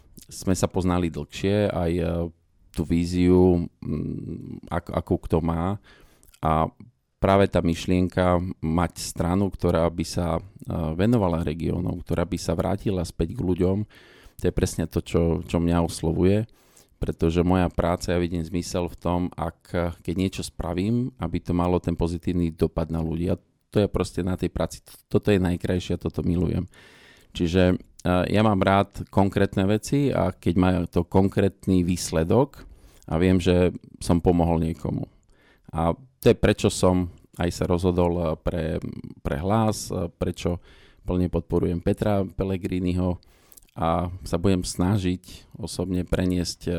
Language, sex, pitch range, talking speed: Slovak, male, 85-95 Hz, 140 wpm